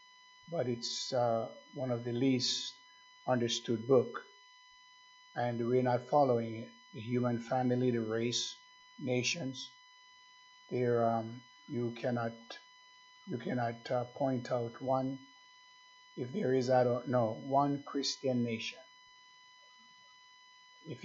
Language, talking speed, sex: English, 110 wpm, male